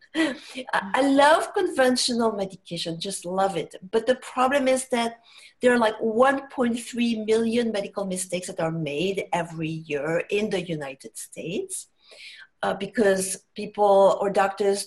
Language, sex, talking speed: English, female, 135 wpm